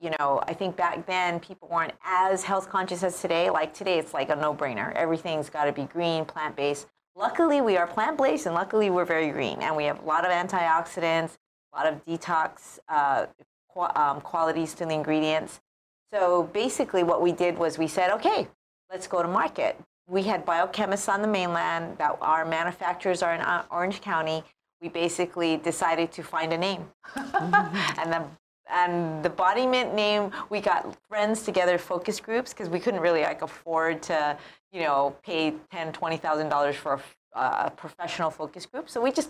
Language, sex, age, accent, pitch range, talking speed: English, female, 30-49, American, 160-195 Hz, 180 wpm